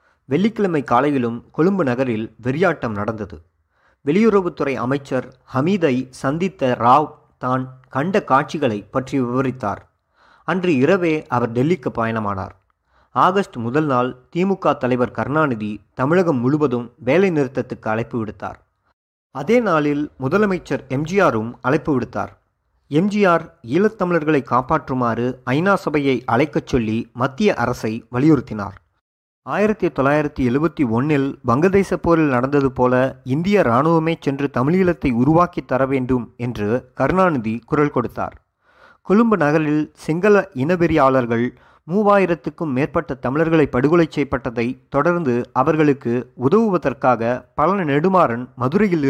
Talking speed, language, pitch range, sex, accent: 90 wpm, Tamil, 120-165 Hz, male, native